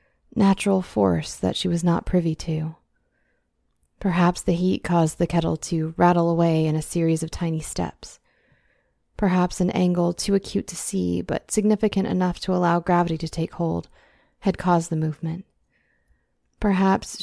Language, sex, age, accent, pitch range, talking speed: English, female, 30-49, American, 170-190 Hz, 155 wpm